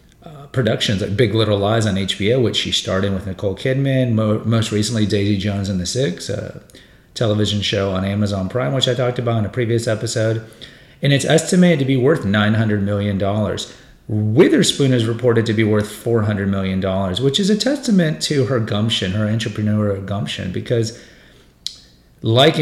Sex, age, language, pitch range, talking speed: male, 30-49, English, 105-125 Hz, 165 wpm